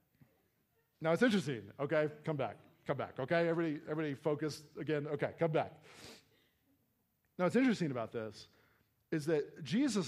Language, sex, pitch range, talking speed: English, male, 120-170 Hz, 145 wpm